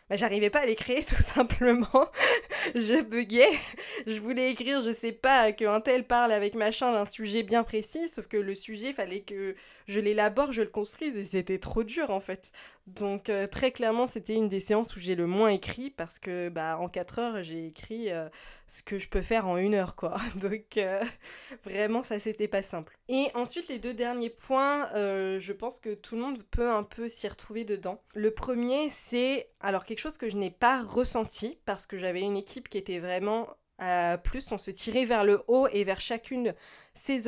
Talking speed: 210 wpm